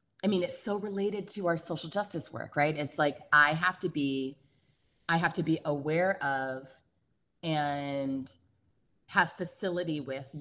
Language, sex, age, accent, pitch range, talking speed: English, female, 30-49, American, 130-160 Hz, 155 wpm